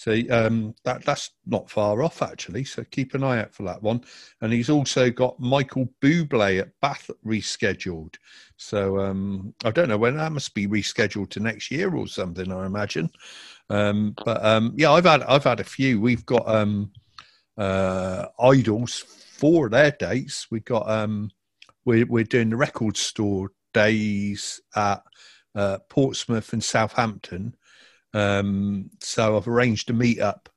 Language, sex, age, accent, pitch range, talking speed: English, male, 50-69, British, 105-125 Hz, 165 wpm